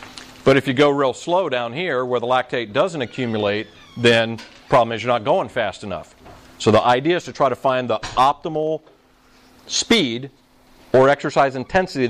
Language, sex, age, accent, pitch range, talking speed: English, male, 40-59, American, 110-140 Hz, 180 wpm